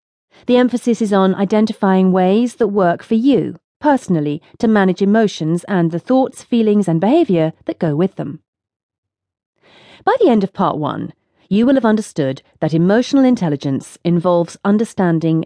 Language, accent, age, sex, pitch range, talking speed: English, British, 40-59, female, 165-230 Hz, 150 wpm